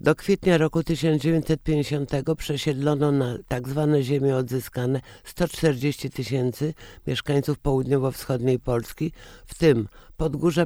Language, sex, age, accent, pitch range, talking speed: Polish, male, 60-79, native, 130-150 Hz, 100 wpm